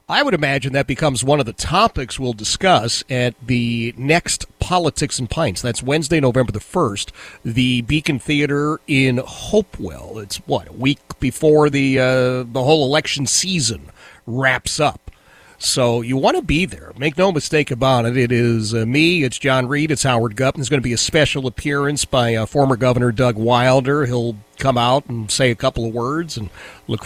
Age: 40-59